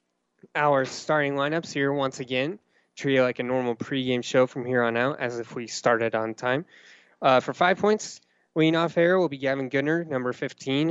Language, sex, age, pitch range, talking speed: English, male, 20-39, 120-145 Hz, 185 wpm